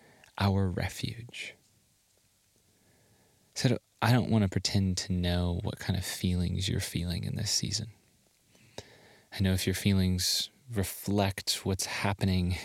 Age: 20-39